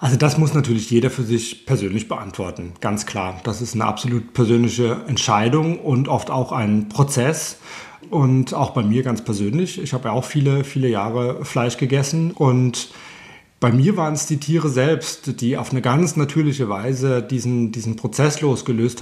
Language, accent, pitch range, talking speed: German, German, 115-140 Hz, 175 wpm